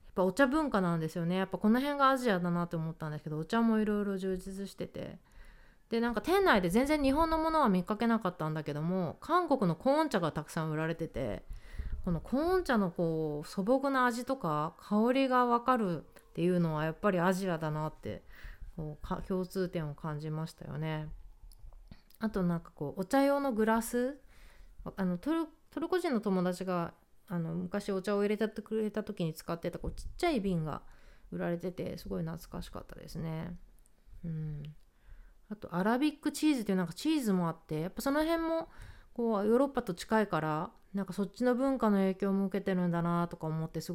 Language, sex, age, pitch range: Japanese, female, 30-49, 165-235 Hz